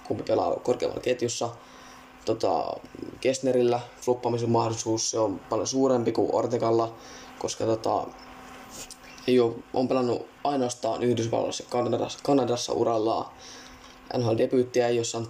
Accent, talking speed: native, 110 wpm